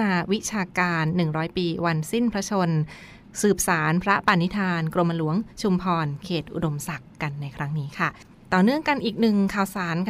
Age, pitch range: 20-39, 170-205 Hz